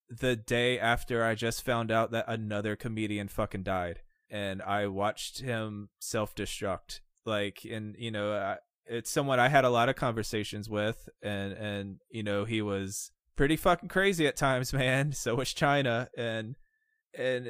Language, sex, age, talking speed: English, male, 20-39, 160 wpm